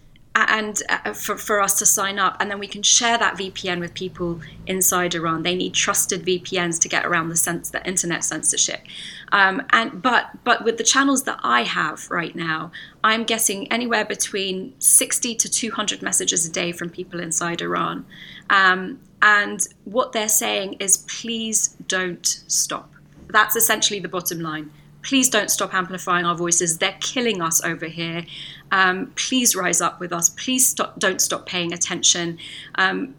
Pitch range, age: 175-215 Hz, 30-49